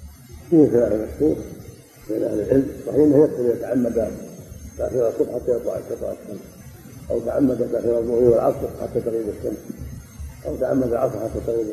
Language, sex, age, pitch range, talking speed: Arabic, male, 50-69, 80-130 Hz, 120 wpm